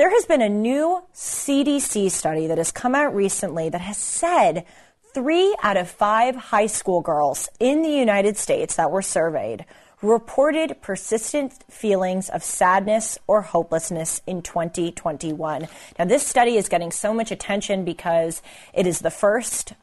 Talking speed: 155 wpm